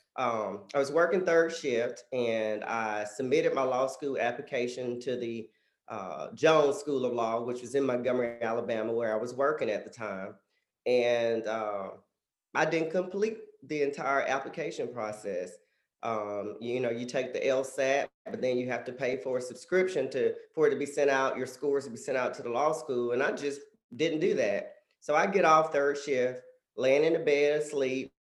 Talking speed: 195 wpm